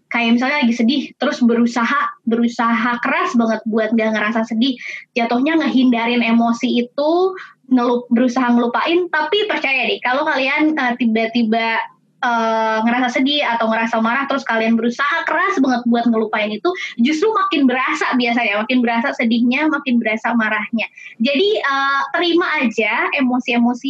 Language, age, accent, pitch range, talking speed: Indonesian, 20-39, native, 230-280 Hz, 140 wpm